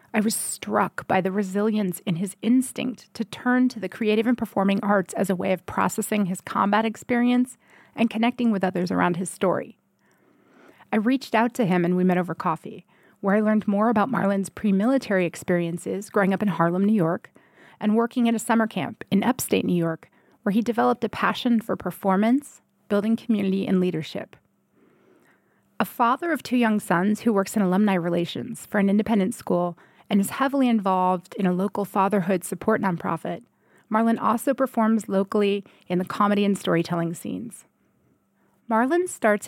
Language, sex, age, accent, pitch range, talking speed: English, female, 30-49, American, 185-230 Hz, 175 wpm